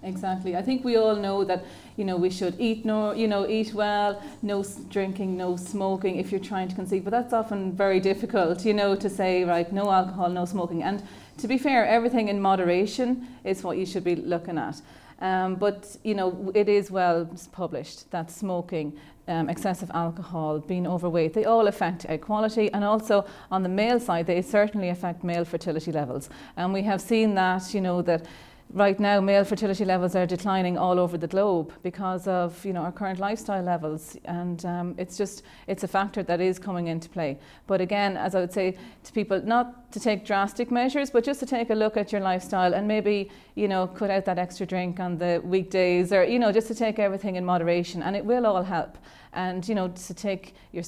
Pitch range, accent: 180-205 Hz, Irish